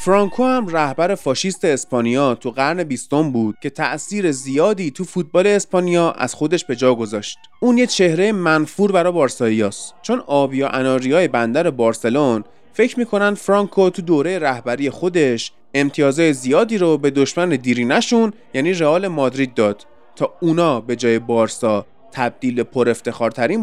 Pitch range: 125-185 Hz